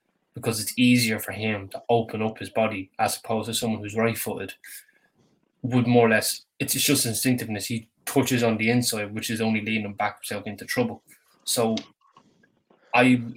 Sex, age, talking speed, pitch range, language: male, 10-29, 180 wpm, 105-125 Hz, English